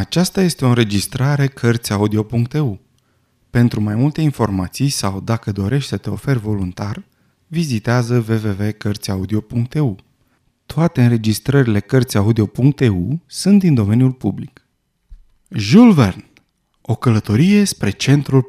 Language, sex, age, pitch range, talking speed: Romanian, male, 30-49, 115-165 Hz, 100 wpm